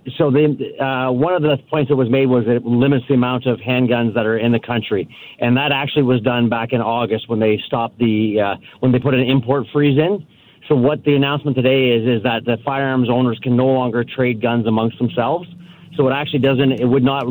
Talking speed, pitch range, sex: 230 wpm, 115-135 Hz, male